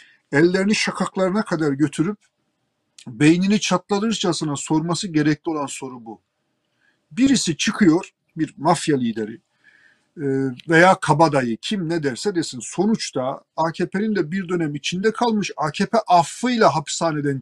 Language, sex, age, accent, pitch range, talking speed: Turkish, male, 50-69, native, 155-210 Hz, 110 wpm